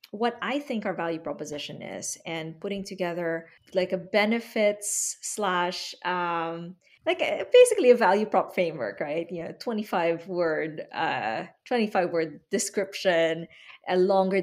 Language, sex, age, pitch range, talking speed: English, female, 20-39, 175-215 Hz, 135 wpm